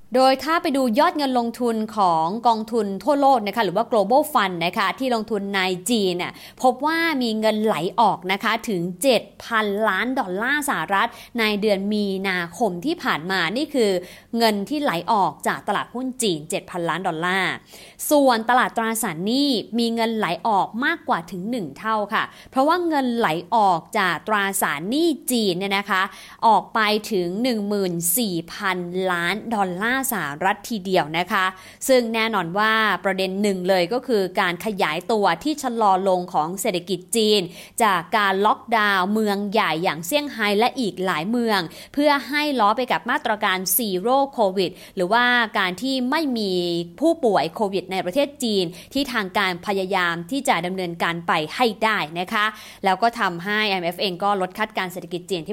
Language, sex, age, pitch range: English, female, 20-39, 185-240 Hz